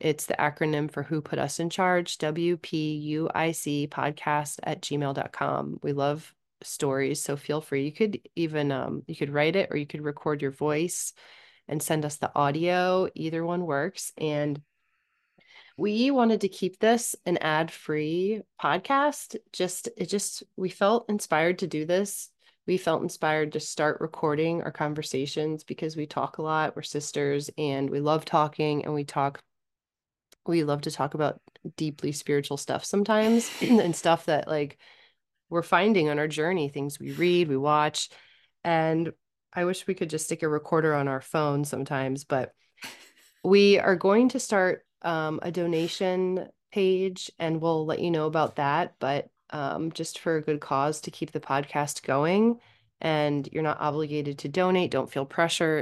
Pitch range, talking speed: 145-180 Hz, 165 wpm